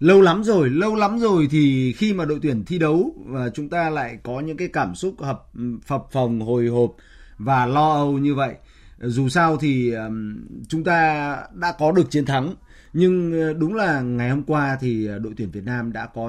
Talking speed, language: 205 wpm, Vietnamese